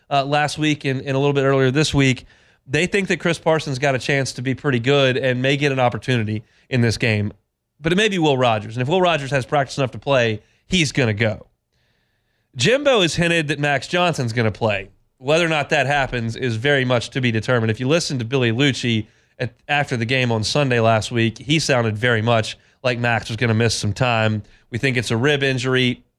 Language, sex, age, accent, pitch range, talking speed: English, male, 30-49, American, 115-150 Hz, 230 wpm